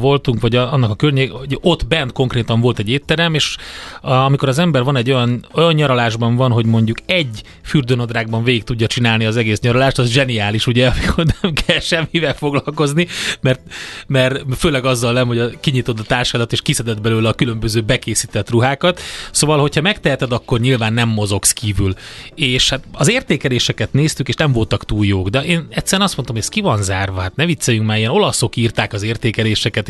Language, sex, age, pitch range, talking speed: Hungarian, male, 30-49, 110-140 Hz, 190 wpm